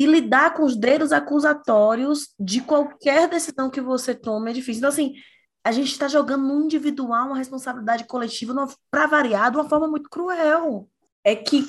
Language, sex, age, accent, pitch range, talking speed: Portuguese, female, 20-39, Brazilian, 235-305 Hz, 175 wpm